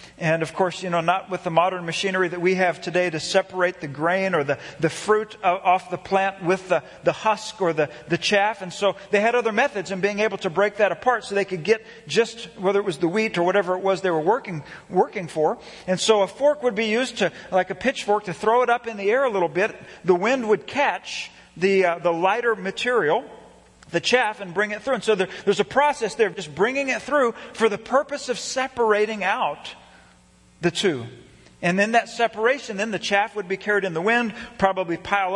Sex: male